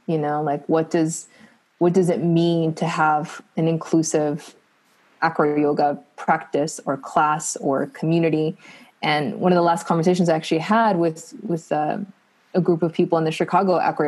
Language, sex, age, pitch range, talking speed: English, female, 20-39, 160-190 Hz, 170 wpm